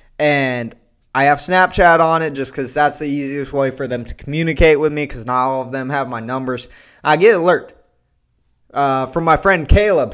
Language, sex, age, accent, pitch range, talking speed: English, male, 20-39, American, 135-185 Hz, 205 wpm